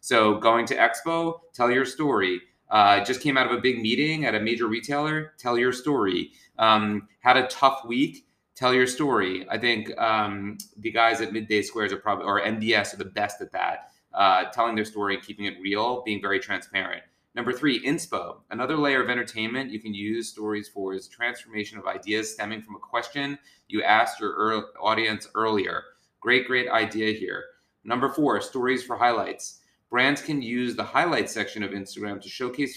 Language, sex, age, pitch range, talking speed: English, male, 30-49, 105-130 Hz, 185 wpm